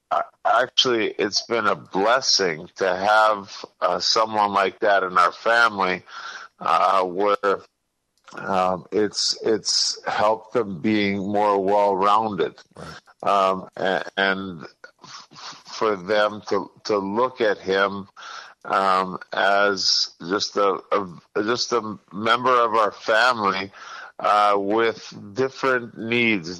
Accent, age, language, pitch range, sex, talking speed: American, 50-69, English, 95-110 Hz, male, 110 wpm